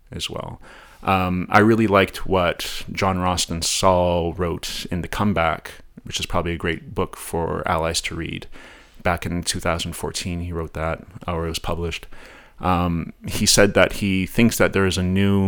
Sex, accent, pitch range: male, American, 85-100 Hz